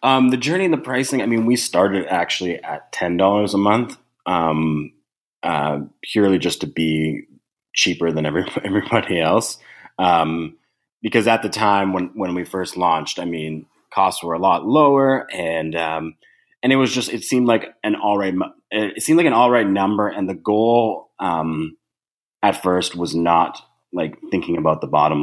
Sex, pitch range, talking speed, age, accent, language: male, 80-105 Hz, 180 wpm, 30-49, American, English